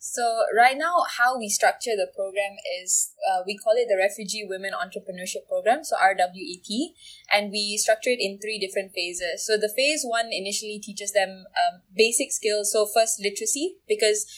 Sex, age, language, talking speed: female, 20-39, English, 175 wpm